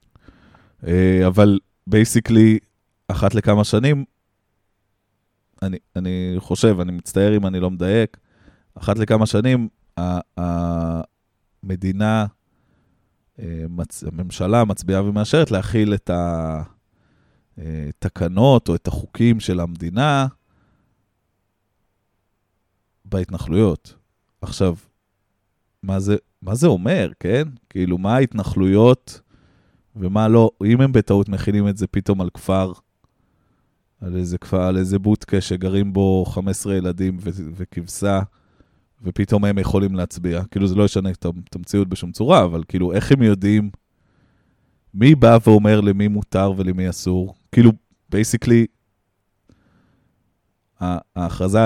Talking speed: 100 wpm